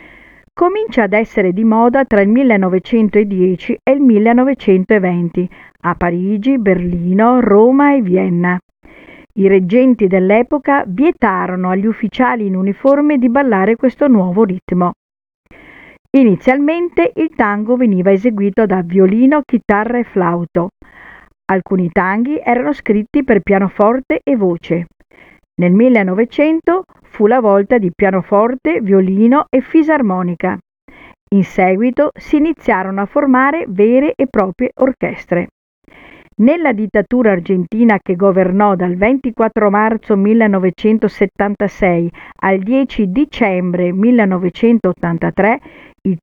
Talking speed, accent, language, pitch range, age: 105 wpm, native, Italian, 190-255 Hz, 50-69